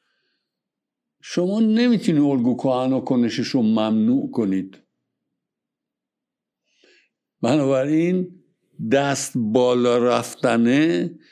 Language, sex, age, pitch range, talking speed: Persian, male, 60-79, 115-175 Hz, 60 wpm